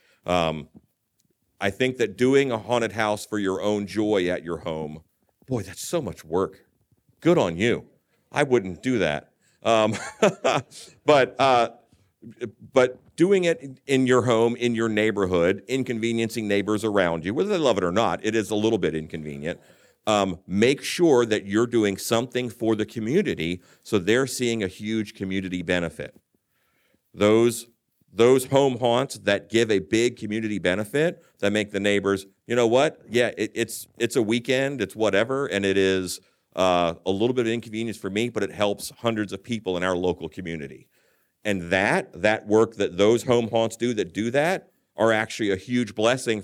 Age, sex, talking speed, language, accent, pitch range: 50-69, male, 175 wpm, English, American, 95-120 Hz